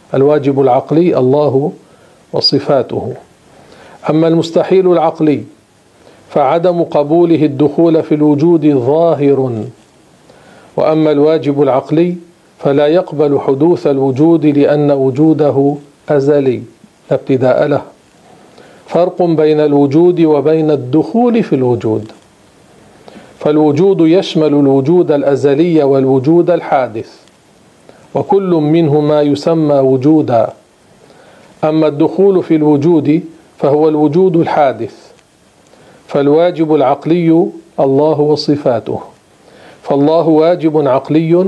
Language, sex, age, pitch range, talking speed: Arabic, male, 50-69, 145-165 Hz, 80 wpm